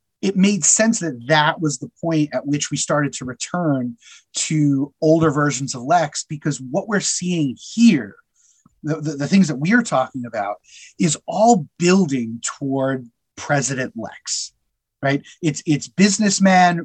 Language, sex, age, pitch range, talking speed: English, male, 30-49, 140-190 Hz, 150 wpm